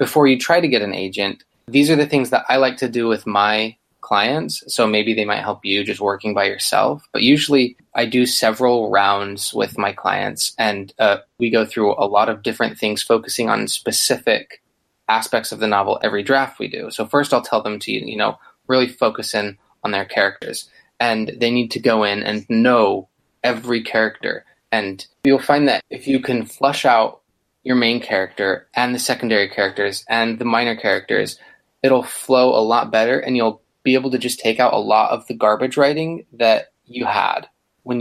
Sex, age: male, 20-39